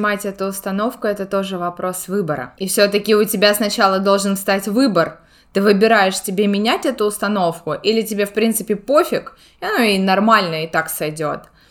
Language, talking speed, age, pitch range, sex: Russian, 165 wpm, 20-39, 200-245 Hz, female